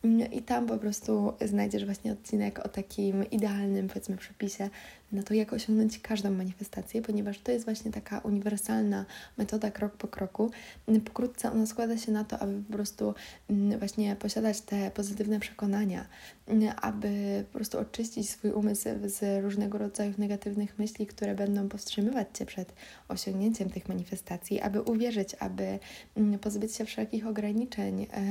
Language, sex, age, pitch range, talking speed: Polish, female, 20-39, 200-225 Hz, 145 wpm